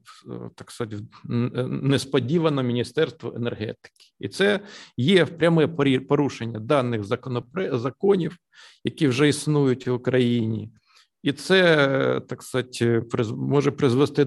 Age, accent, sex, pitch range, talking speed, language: 50-69, native, male, 120-155 Hz, 105 wpm, Ukrainian